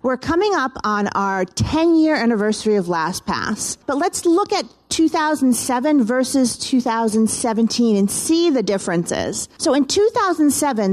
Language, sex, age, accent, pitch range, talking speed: English, female, 40-59, American, 215-310 Hz, 125 wpm